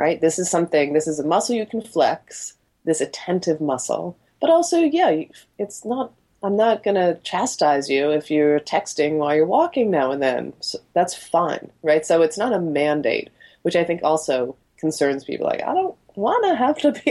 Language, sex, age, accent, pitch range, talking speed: English, female, 20-39, American, 145-190 Hz, 195 wpm